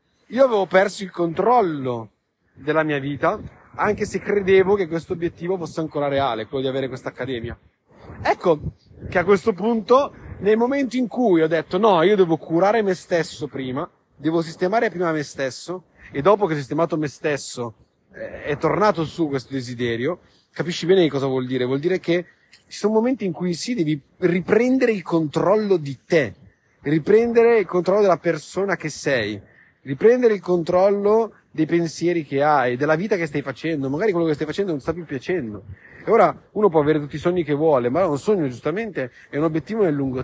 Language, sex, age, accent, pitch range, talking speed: Italian, male, 30-49, native, 145-195 Hz, 190 wpm